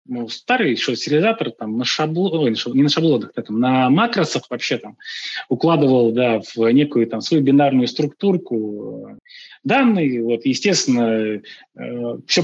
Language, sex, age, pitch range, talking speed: Russian, male, 20-39, 120-165 Hz, 140 wpm